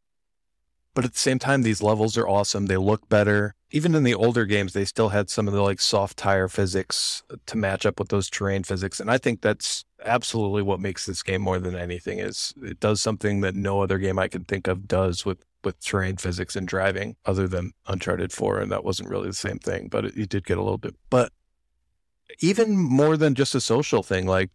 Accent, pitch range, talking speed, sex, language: American, 95-115 Hz, 225 wpm, male, English